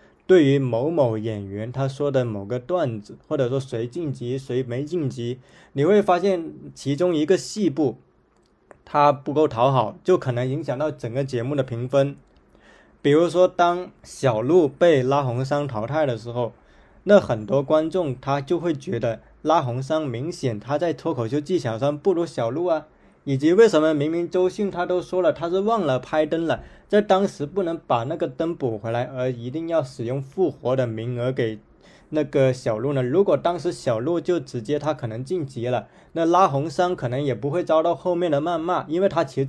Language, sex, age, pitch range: Chinese, male, 20-39, 130-170 Hz